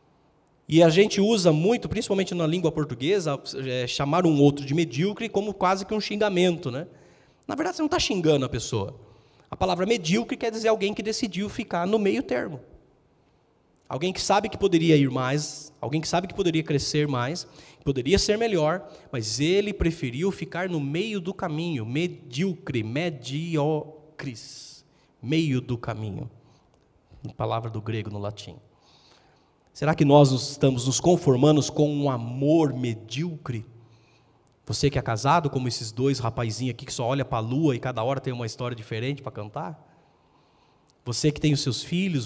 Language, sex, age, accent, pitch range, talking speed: Portuguese, male, 20-39, Brazilian, 135-185 Hz, 165 wpm